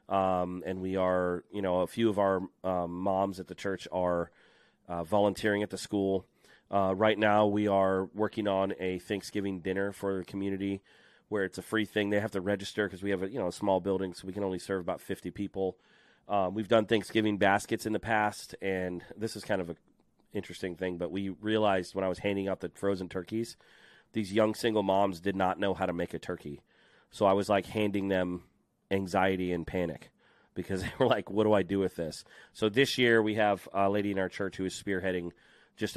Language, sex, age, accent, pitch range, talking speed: English, male, 30-49, American, 90-105 Hz, 220 wpm